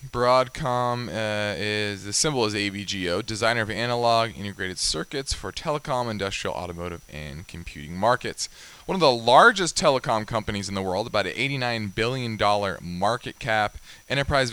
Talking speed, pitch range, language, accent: 145 wpm, 100-125 Hz, English, American